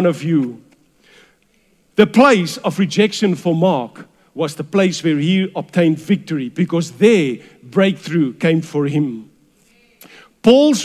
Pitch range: 160-265 Hz